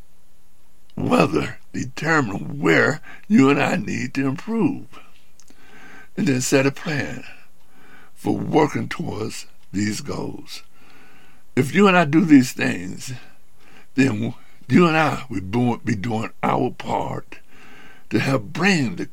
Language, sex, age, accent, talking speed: English, male, 60-79, American, 120 wpm